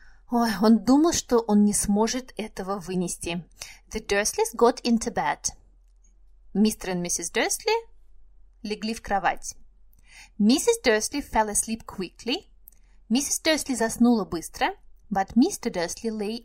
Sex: female